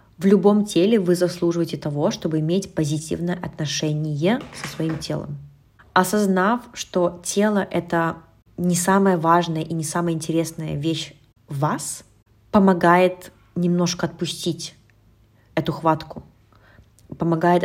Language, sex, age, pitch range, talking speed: Russian, female, 20-39, 145-180 Hz, 115 wpm